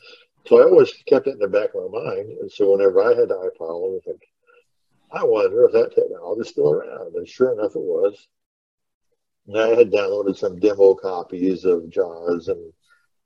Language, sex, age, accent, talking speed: English, male, 60-79, American, 200 wpm